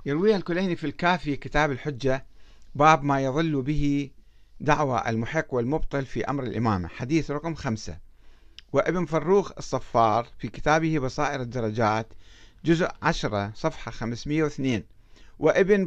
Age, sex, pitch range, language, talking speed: 50-69, male, 110-165 Hz, Arabic, 115 wpm